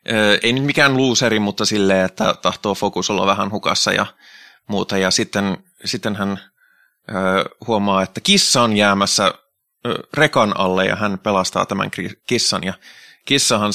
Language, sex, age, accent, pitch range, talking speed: Finnish, male, 20-39, native, 100-120 Hz, 140 wpm